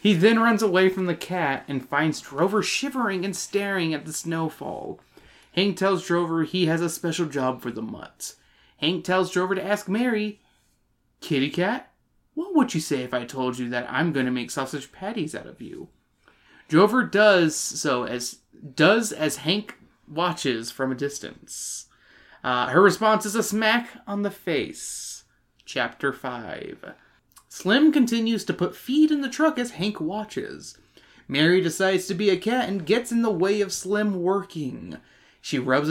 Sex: male